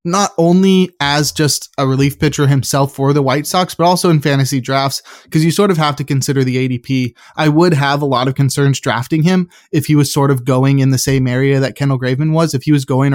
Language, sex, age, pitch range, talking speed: English, male, 20-39, 130-145 Hz, 240 wpm